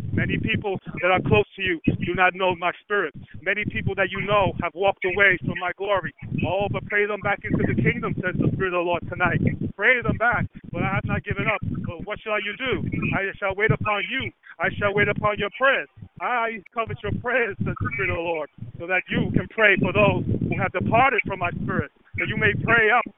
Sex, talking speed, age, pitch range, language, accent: male, 235 wpm, 40-59, 190-230 Hz, English, American